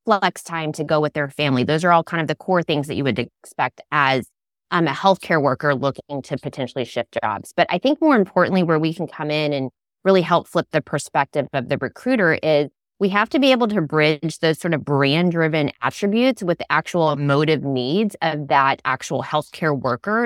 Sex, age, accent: female, 20-39, American